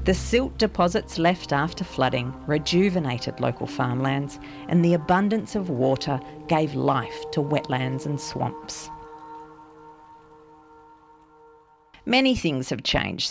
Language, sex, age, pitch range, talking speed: English, female, 40-59, 135-185 Hz, 110 wpm